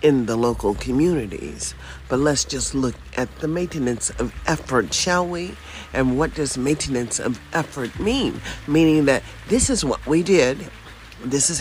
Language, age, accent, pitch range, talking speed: English, 50-69, American, 105-160 Hz, 160 wpm